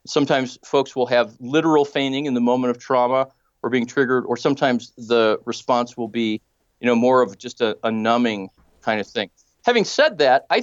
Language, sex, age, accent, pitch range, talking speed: English, male, 40-59, American, 120-165 Hz, 200 wpm